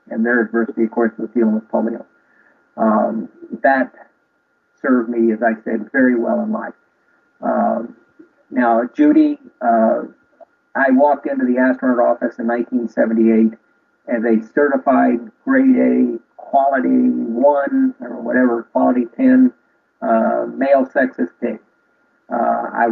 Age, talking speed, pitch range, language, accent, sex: 50-69, 130 wpm, 115-175 Hz, English, American, male